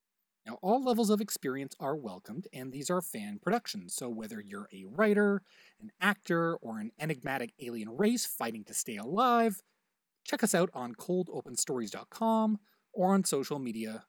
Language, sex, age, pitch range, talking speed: English, male, 30-49, 140-220 Hz, 160 wpm